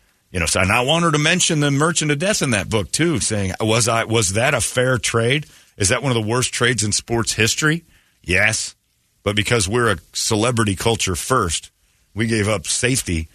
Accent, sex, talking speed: American, male, 205 wpm